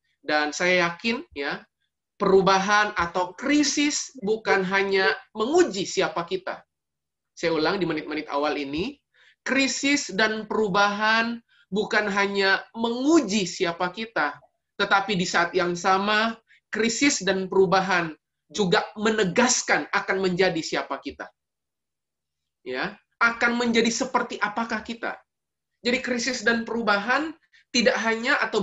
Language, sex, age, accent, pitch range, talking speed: Indonesian, male, 20-39, native, 185-230 Hz, 110 wpm